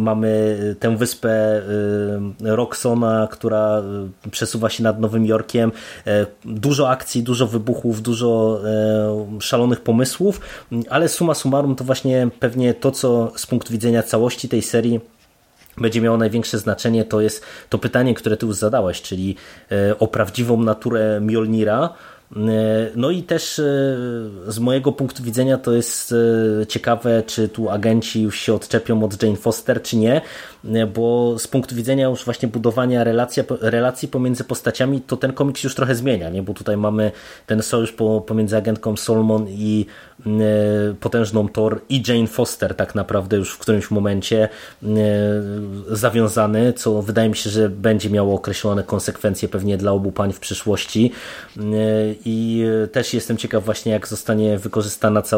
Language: Polish